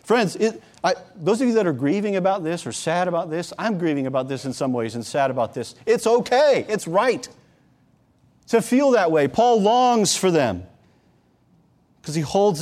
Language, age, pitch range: English, 40-59, 120-170 Hz